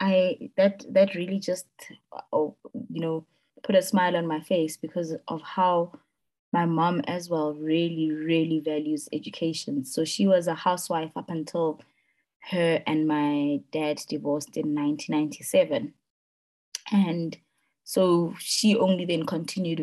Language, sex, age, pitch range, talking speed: English, female, 20-39, 155-190 Hz, 135 wpm